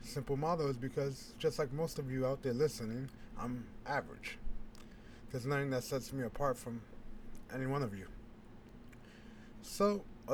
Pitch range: 115-140 Hz